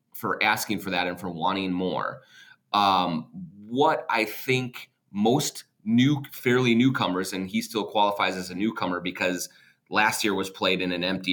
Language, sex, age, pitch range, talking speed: English, male, 30-49, 90-115 Hz, 165 wpm